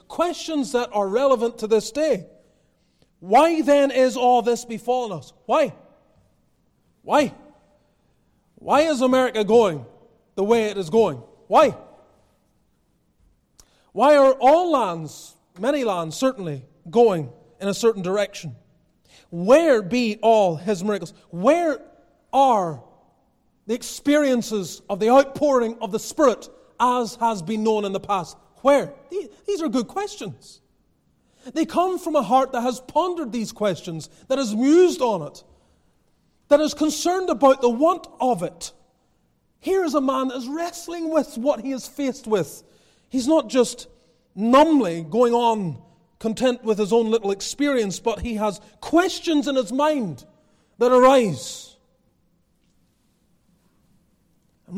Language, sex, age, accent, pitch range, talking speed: English, male, 30-49, American, 205-280 Hz, 135 wpm